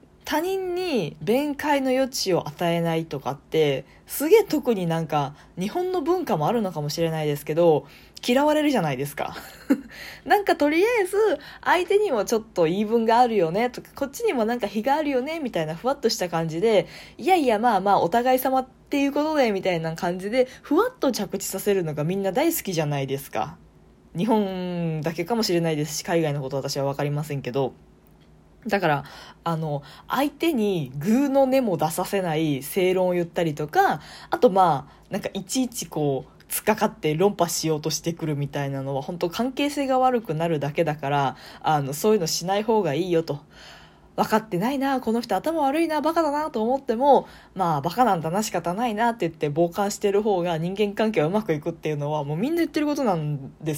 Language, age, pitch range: Japanese, 20-39, 155-255 Hz